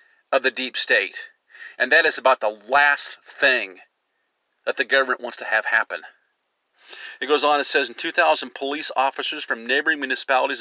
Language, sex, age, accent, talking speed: English, male, 40-59, American, 170 wpm